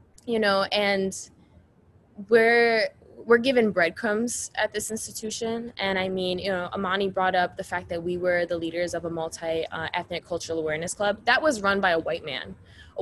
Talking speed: 185 wpm